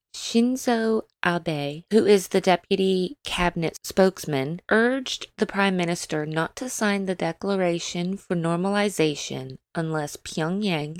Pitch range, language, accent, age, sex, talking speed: 165-215 Hz, English, American, 20-39, female, 115 wpm